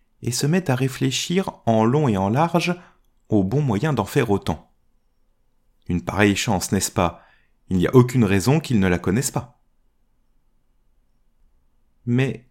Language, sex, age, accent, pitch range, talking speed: French, male, 30-49, French, 105-145 Hz, 155 wpm